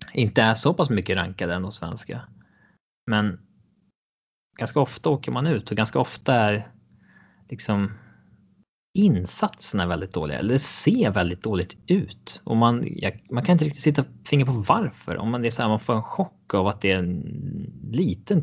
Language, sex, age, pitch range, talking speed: English, male, 20-39, 100-130 Hz, 180 wpm